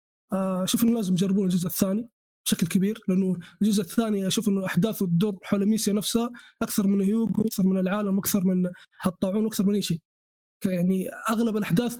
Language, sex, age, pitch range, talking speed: Arabic, male, 20-39, 190-225 Hz, 170 wpm